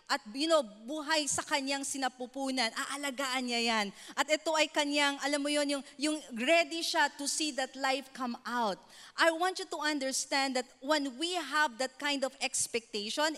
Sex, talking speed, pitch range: female, 180 wpm, 255-330 Hz